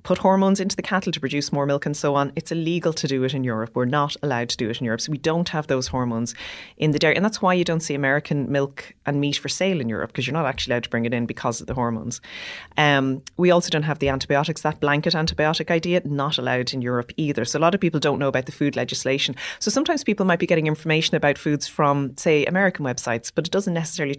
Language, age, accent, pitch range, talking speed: English, 30-49, Irish, 130-165 Hz, 265 wpm